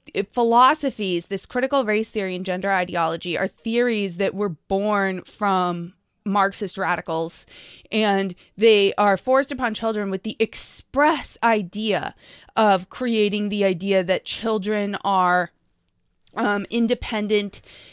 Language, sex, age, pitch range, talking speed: English, female, 20-39, 185-225 Hz, 120 wpm